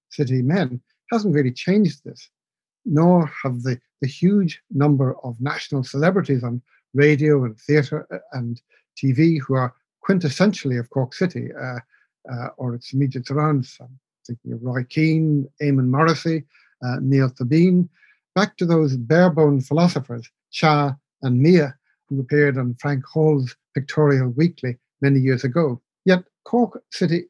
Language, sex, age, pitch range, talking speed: English, male, 60-79, 130-165 Hz, 140 wpm